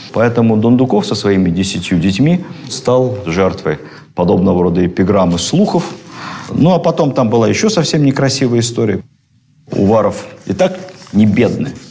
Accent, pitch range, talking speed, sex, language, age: native, 95-140 Hz, 130 wpm, male, Russian, 50-69